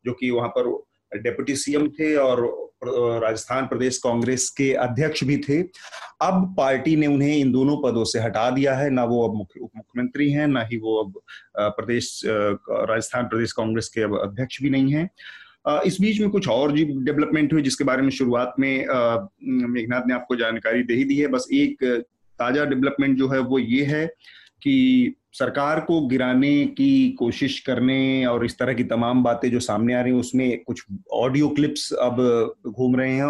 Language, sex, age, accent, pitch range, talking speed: Hindi, male, 30-49, native, 115-140 Hz, 185 wpm